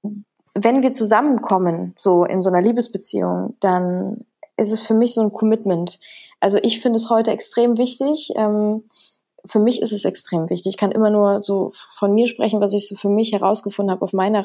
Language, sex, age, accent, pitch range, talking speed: German, female, 20-39, German, 195-220 Hz, 190 wpm